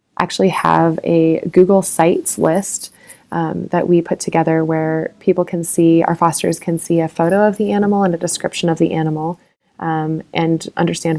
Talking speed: 175 wpm